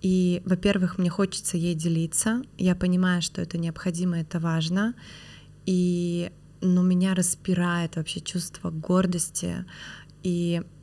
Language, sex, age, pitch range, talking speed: Russian, female, 20-39, 165-190 Hz, 110 wpm